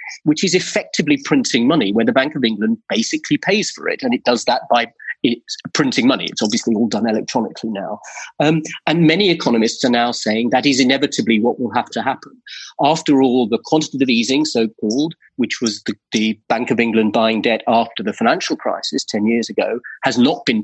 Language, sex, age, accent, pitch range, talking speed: English, male, 40-59, British, 115-175 Hz, 200 wpm